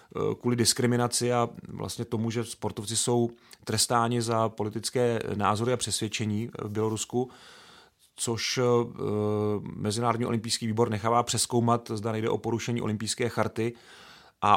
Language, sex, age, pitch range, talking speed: Czech, male, 40-59, 115-125 Hz, 120 wpm